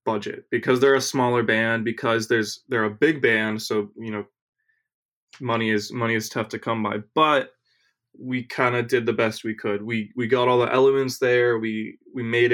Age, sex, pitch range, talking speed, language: 20-39, male, 110-125 Hz, 200 wpm, English